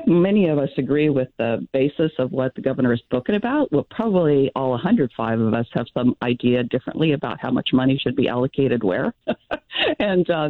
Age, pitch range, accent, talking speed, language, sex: 40-59, 125-145 Hz, American, 195 wpm, English, female